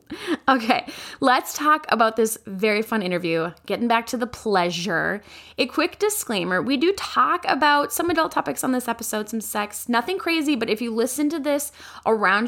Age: 10-29